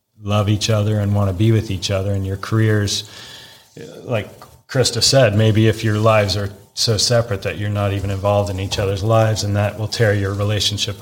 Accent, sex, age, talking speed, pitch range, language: American, male, 30-49, 205 wpm, 100-115 Hz, English